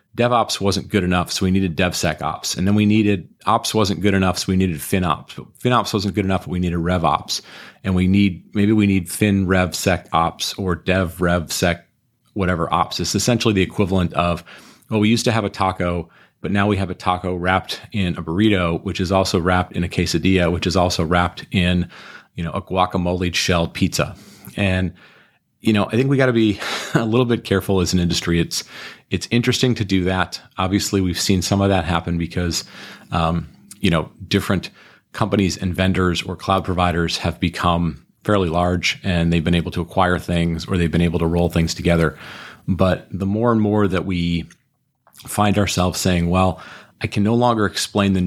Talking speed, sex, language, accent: 190 wpm, male, English, American